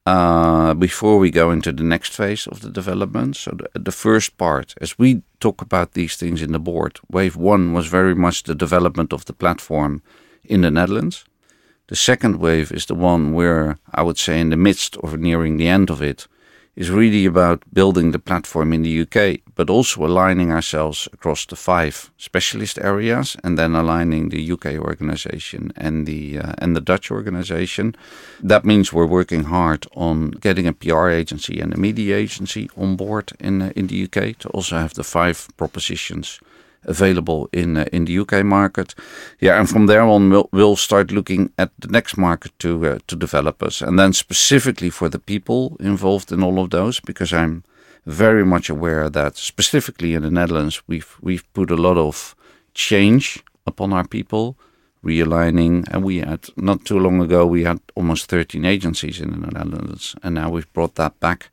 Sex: male